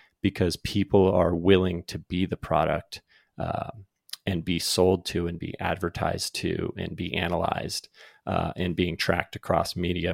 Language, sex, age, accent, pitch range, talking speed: English, male, 30-49, American, 85-100 Hz, 155 wpm